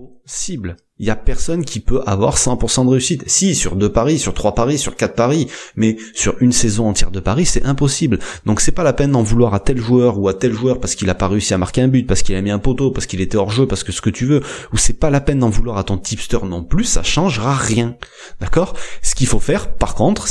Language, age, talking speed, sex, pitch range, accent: French, 30-49, 270 wpm, male, 105-135 Hz, French